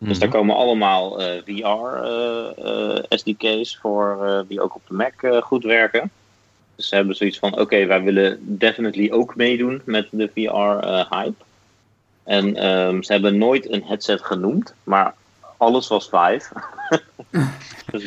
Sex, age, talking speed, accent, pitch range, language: male, 30-49, 155 wpm, Dutch, 95-110 Hz, Dutch